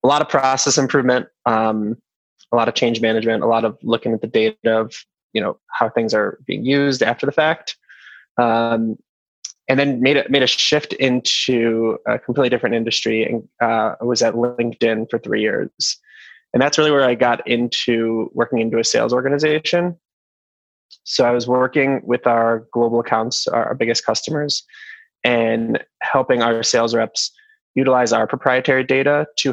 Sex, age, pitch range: male, 20-39, 115-135 Hz